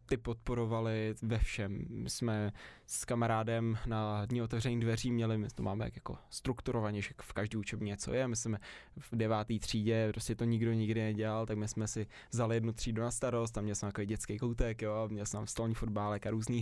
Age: 20-39